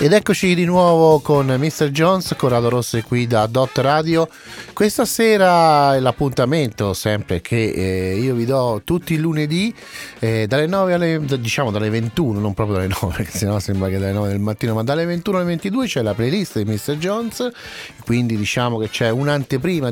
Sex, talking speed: male, 180 wpm